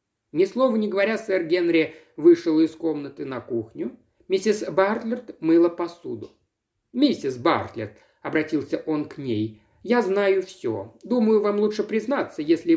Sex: male